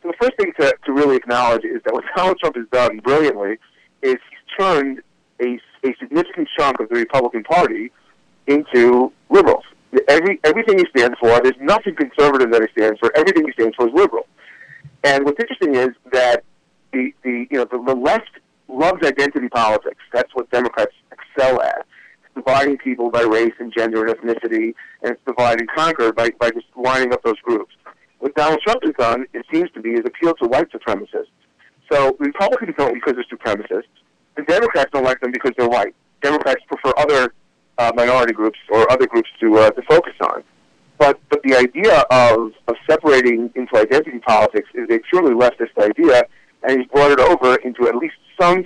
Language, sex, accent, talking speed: English, male, American, 190 wpm